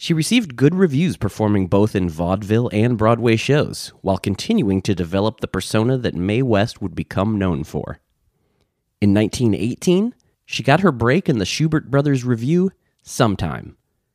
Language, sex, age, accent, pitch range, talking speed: English, male, 30-49, American, 105-145 Hz, 155 wpm